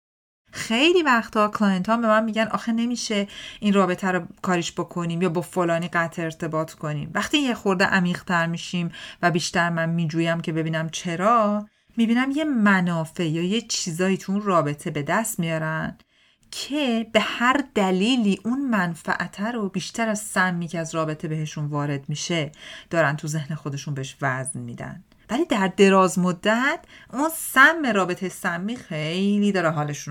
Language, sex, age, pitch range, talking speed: Persian, female, 40-59, 160-220 Hz, 150 wpm